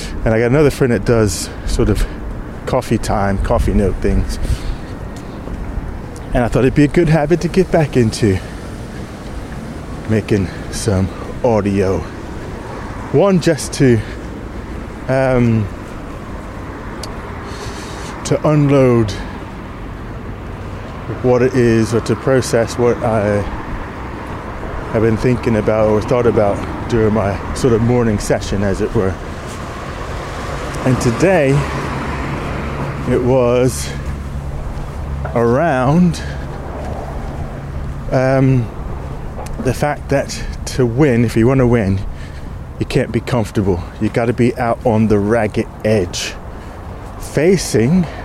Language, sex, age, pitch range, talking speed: English, male, 20-39, 95-125 Hz, 110 wpm